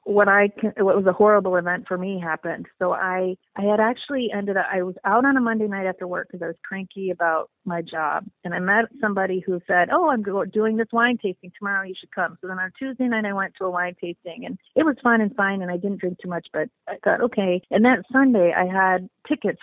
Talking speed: 250 wpm